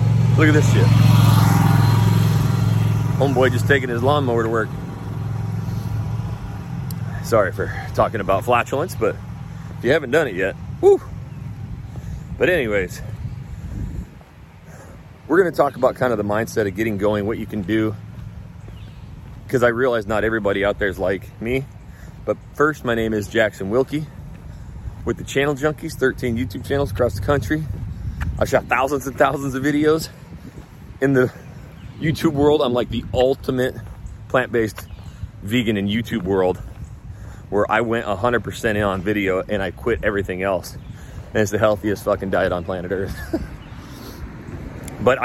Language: English